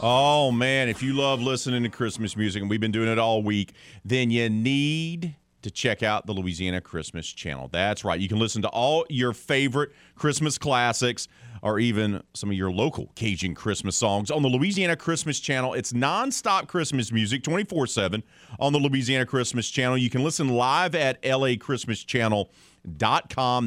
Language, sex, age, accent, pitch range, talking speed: English, male, 40-59, American, 95-145 Hz, 170 wpm